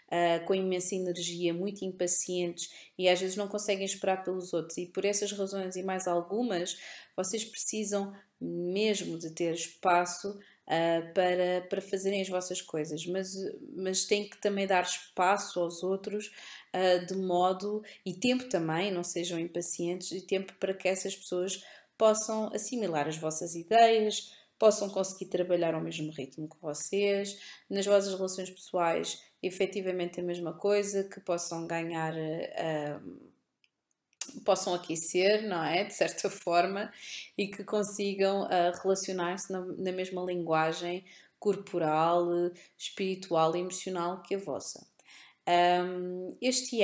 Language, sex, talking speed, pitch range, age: Portuguese, female, 135 wpm, 175-200 Hz, 20-39